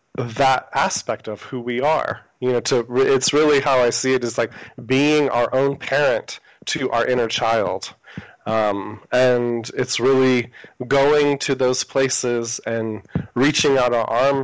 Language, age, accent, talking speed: English, 30-49, American, 160 wpm